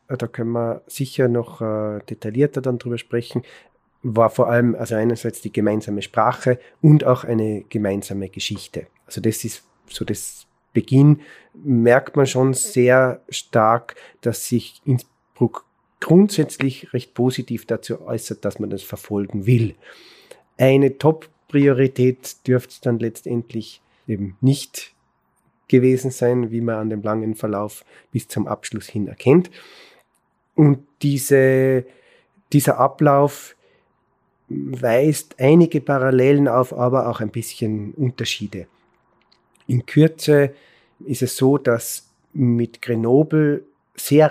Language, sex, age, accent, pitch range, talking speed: German, male, 30-49, German, 115-140 Hz, 120 wpm